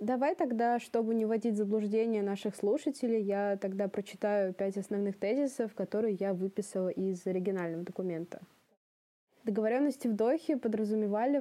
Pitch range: 210-245 Hz